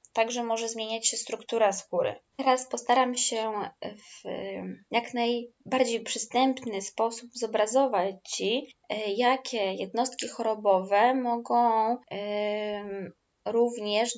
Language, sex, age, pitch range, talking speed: Polish, female, 20-39, 200-240 Hz, 90 wpm